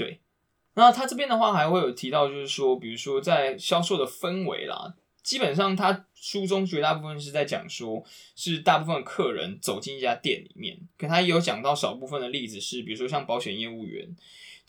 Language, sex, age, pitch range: Chinese, male, 20-39, 125-185 Hz